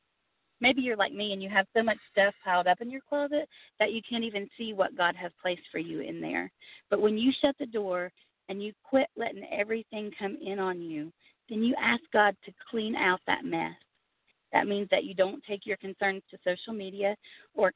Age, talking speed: 40-59, 215 wpm